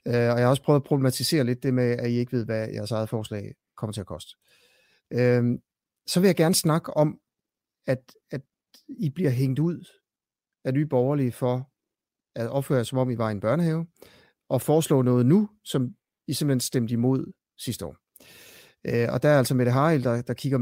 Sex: male